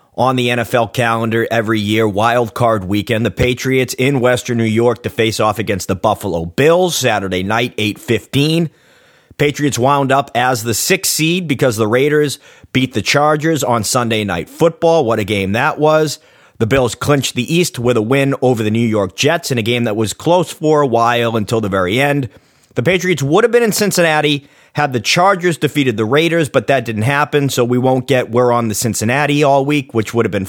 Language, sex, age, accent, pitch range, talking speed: English, male, 30-49, American, 115-150 Hz, 205 wpm